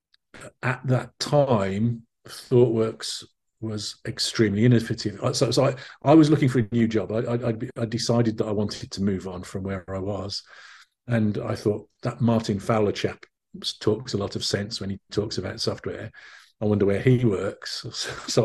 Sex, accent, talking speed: male, British, 175 wpm